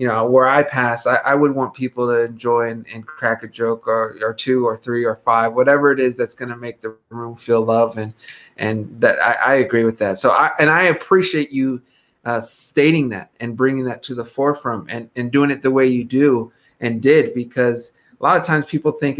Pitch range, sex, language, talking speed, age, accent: 120-145 Hz, male, English, 235 wpm, 30-49, American